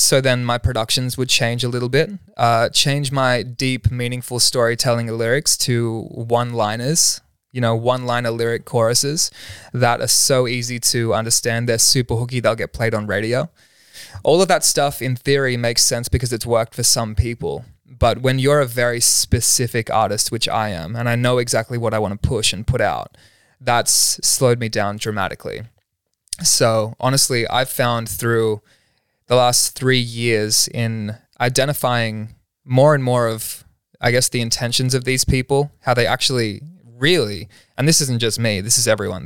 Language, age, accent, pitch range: English, 20-39, Australian, 110-130 Hz